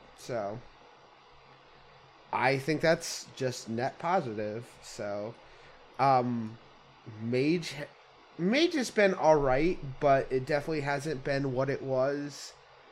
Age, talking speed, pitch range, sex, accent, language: 30-49, 100 wpm, 125-150 Hz, male, American, English